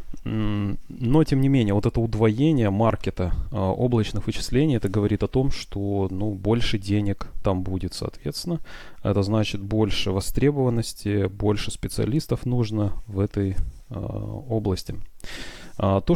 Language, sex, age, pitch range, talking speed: Russian, male, 20-39, 100-120 Hz, 125 wpm